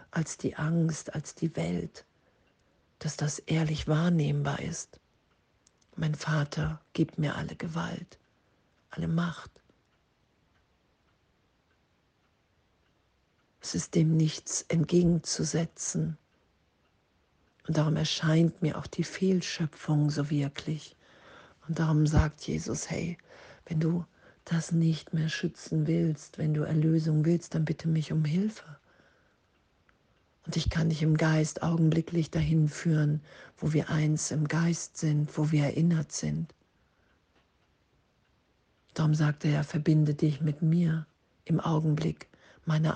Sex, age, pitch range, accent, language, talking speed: female, 50-69, 150-165 Hz, German, German, 115 wpm